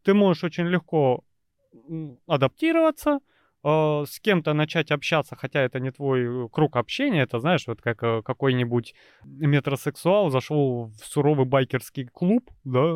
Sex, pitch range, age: male, 130-185 Hz, 20-39